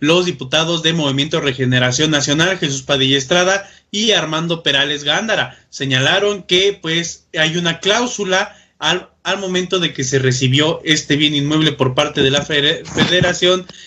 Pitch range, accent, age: 140-175 Hz, Mexican, 30-49